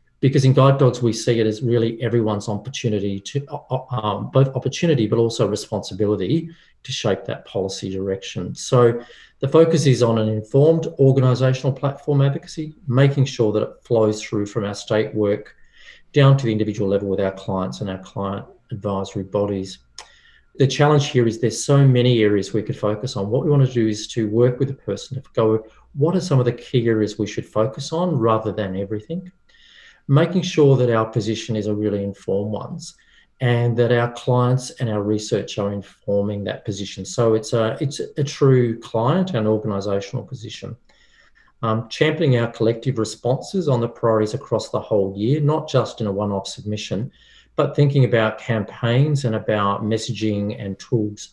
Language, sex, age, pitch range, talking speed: English, male, 40-59, 105-135 Hz, 180 wpm